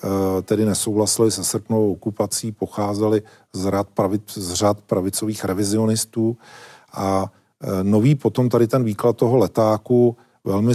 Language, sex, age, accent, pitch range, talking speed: Czech, male, 40-59, native, 100-115 Hz, 105 wpm